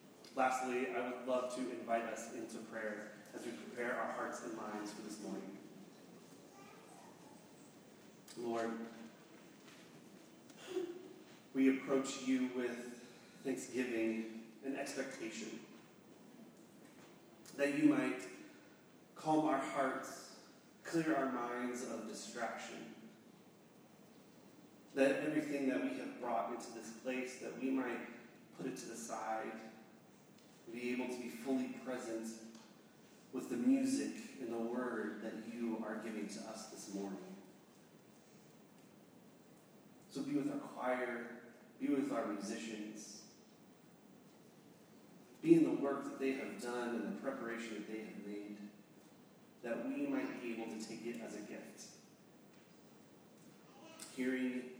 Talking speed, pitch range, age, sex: 120 wpm, 110-135 Hz, 30-49, male